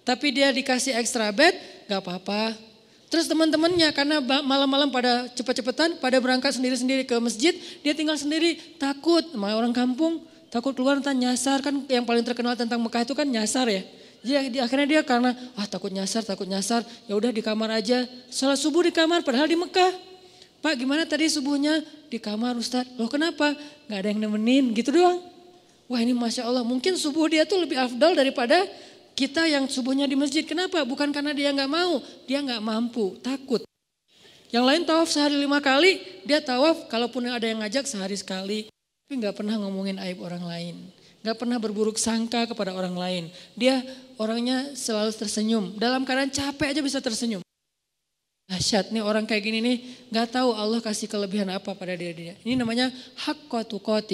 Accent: native